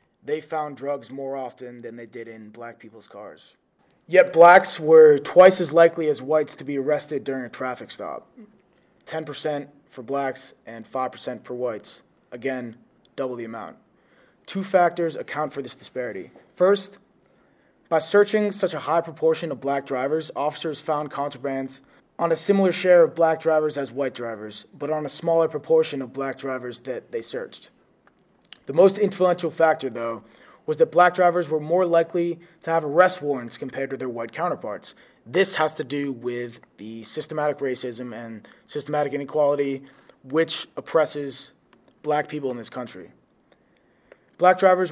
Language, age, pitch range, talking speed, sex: English, 20-39, 135-170 Hz, 160 wpm, male